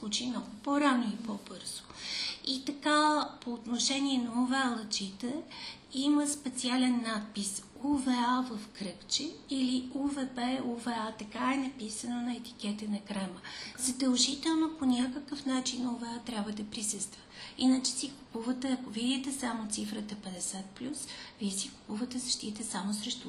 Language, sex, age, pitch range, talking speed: Bulgarian, female, 40-59, 220-275 Hz, 125 wpm